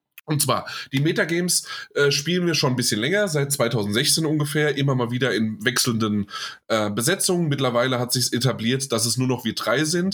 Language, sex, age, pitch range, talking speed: German, male, 20-39, 120-145 Hz, 190 wpm